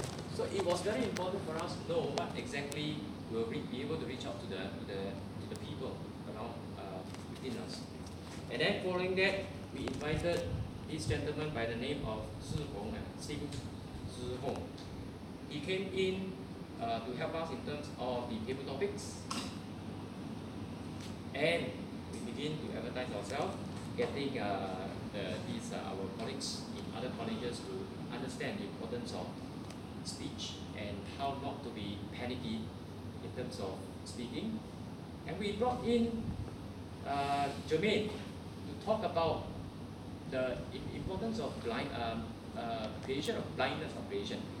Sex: male